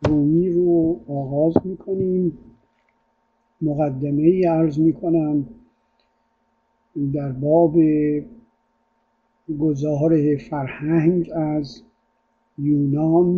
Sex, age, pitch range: male, 60-79, 145-185 Hz